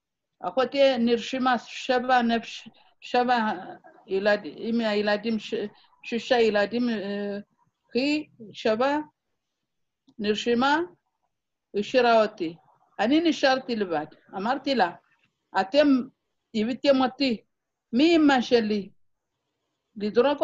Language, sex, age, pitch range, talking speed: Hebrew, female, 60-79, 205-275 Hz, 75 wpm